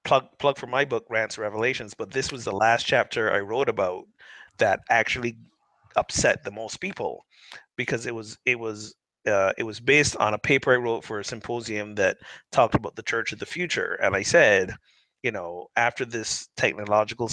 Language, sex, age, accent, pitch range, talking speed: English, male, 30-49, American, 105-135 Hz, 190 wpm